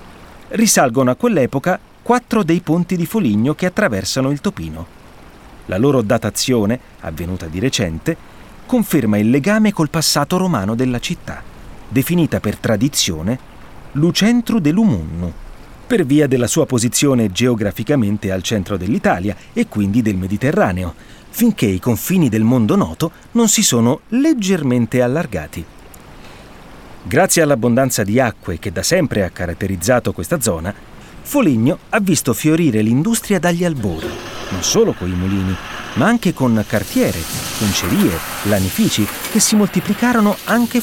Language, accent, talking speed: Italian, native, 130 wpm